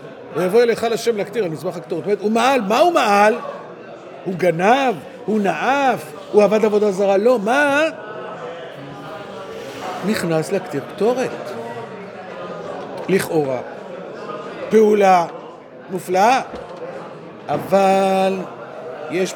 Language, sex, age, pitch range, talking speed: Hebrew, male, 50-69, 180-230 Hz, 100 wpm